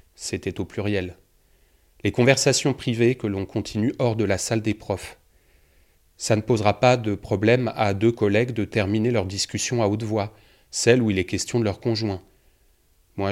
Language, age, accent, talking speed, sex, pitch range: French, 30-49, French, 180 wpm, male, 100-125 Hz